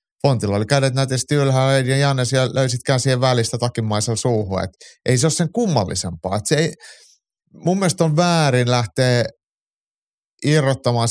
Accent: native